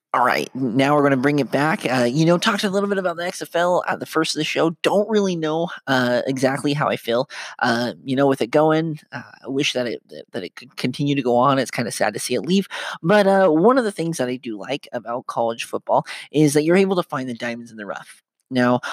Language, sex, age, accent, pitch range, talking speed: English, male, 30-49, American, 130-170 Hz, 265 wpm